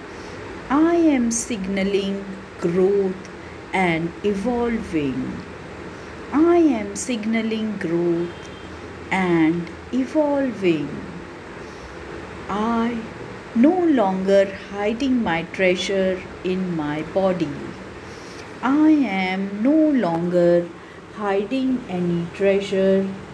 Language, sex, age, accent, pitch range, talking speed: English, female, 50-69, Indian, 170-225 Hz, 70 wpm